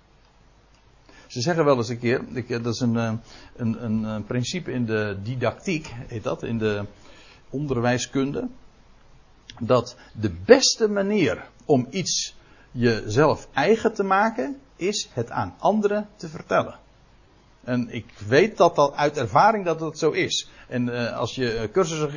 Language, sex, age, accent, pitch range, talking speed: Dutch, male, 60-79, Dutch, 120-190 Hz, 145 wpm